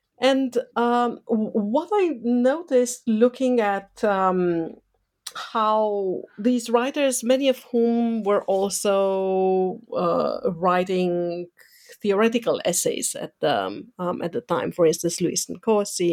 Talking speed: 110 wpm